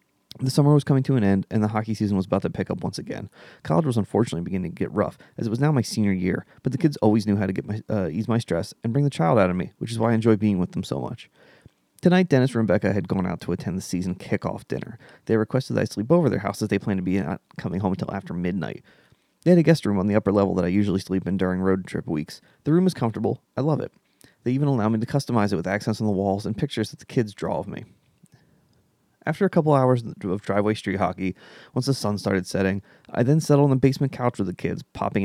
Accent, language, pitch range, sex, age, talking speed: American, English, 95-130 Hz, male, 30-49, 275 wpm